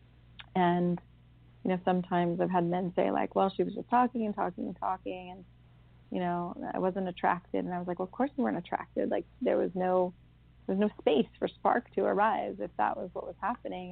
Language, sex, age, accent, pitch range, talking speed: English, female, 30-49, American, 175-210 Hz, 225 wpm